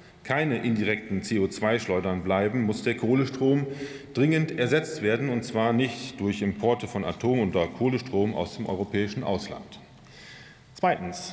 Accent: German